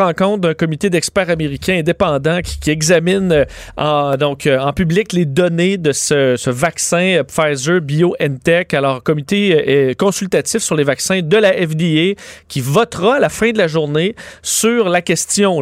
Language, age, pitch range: French, 30-49, 145-185 Hz